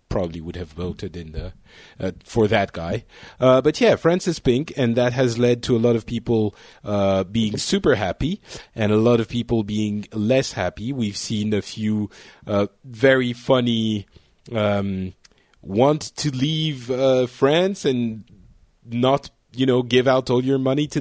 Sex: male